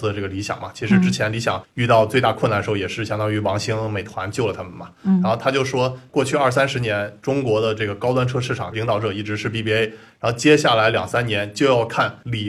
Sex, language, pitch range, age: male, Chinese, 105-130 Hz, 20-39